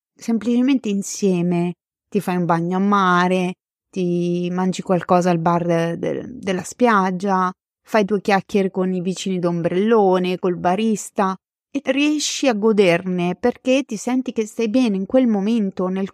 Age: 20-39